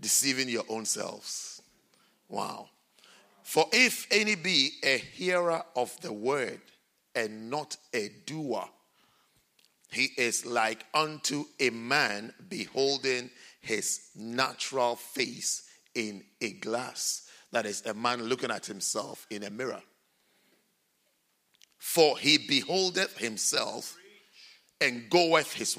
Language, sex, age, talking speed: English, male, 50-69, 110 wpm